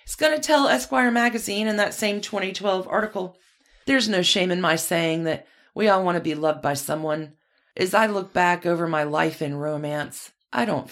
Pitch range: 130-185 Hz